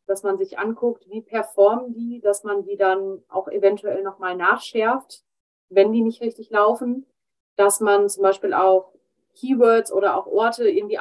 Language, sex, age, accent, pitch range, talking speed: German, female, 30-49, German, 195-230 Hz, 165 wpm